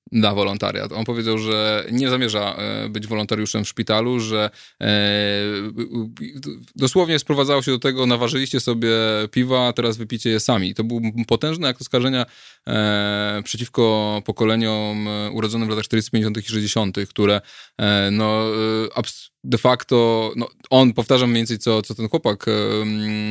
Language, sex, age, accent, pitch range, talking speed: Polish, male, 20-39, native, 110-120 Hz, 130 wpm